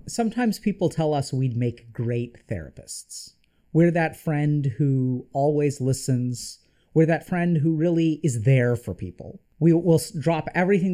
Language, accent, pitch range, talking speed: English, American, 140-200 Hz, 150 wpm